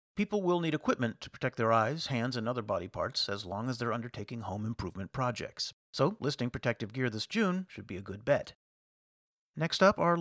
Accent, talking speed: American, 205 wpm